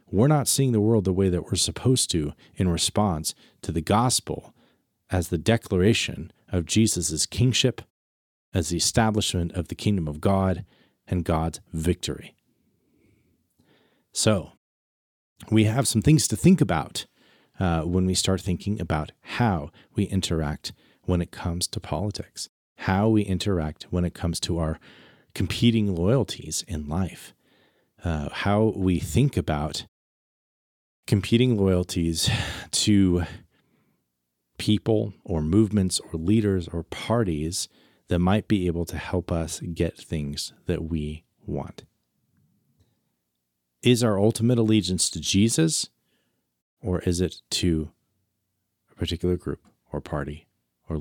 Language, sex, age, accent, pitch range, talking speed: English, male, 40-59, American, 80-110 Hz, 130 wpm